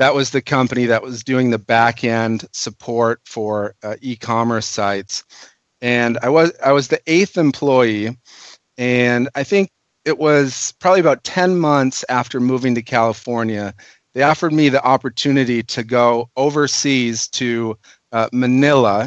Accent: American